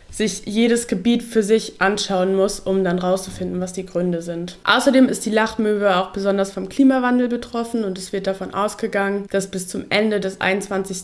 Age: 20-39